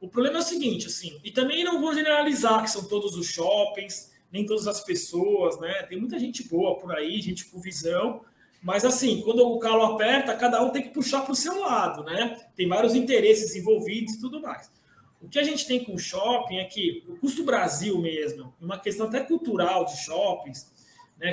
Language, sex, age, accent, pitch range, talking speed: Portuguese, male, 20-39, Brazilian, 190-260 Hz, 210 wpm